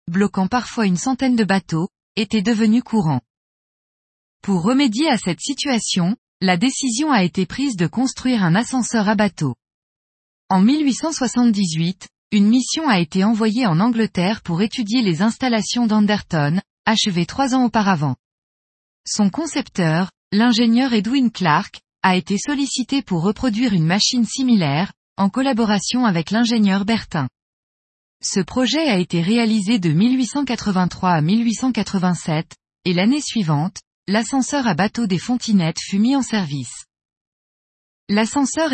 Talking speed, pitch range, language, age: 130 wpm, 180-245 Hz, French, 20-39